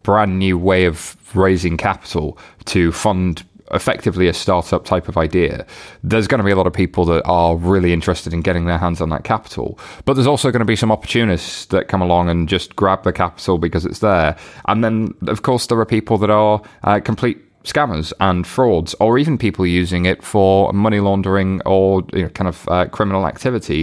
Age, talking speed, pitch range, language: 20-39, 200 wpm, 90-110 Hz, English